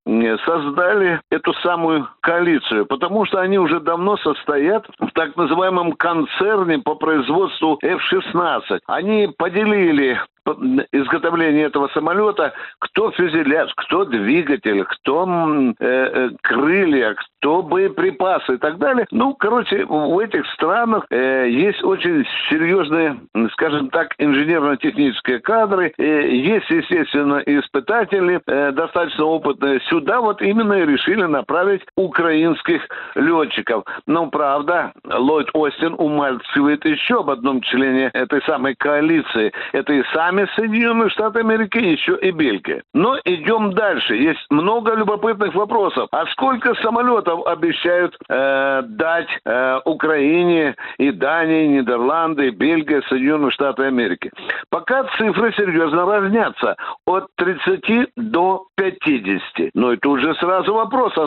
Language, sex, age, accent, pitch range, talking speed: Russian, male, 60-79, native, 150-230 Hz, 115 wpm